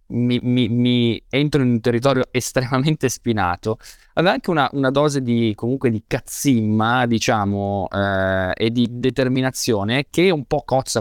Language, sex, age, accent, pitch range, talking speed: Italian, male, 20-39, native, 110-140 Hz, 155 wpm